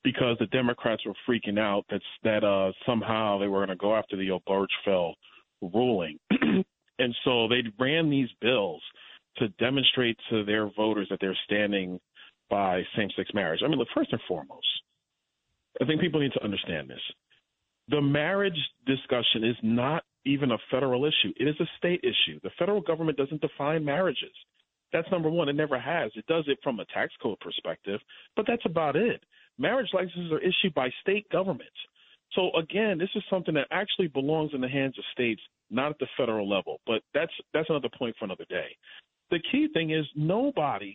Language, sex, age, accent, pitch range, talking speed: English, male, 40-59, American, 115-175 Hz, 180 wpm